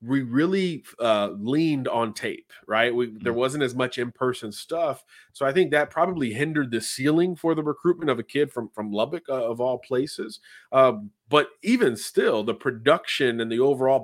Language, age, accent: English, 30-49, American